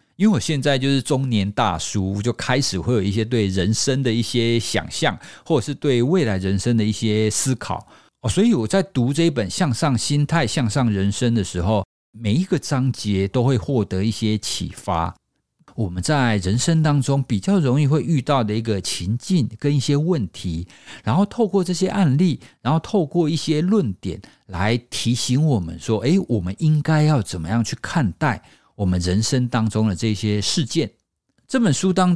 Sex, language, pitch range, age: male, Chinese, 105-150 Hz, 50-69